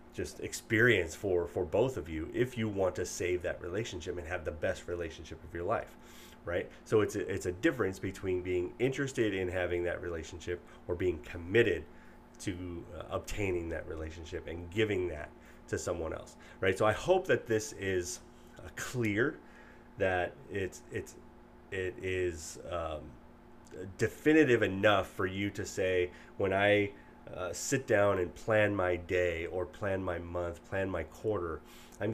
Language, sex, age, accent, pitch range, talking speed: English, male, 30-49, American, 90-110 Hz, 160 wpm